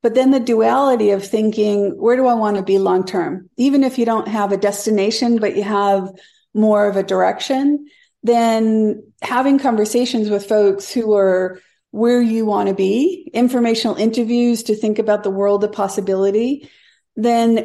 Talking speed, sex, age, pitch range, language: 165 wpm, female, 50-69, 200-245 Hz, English